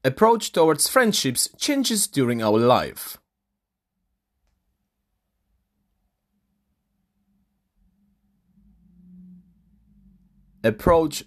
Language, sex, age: English, male, 30-49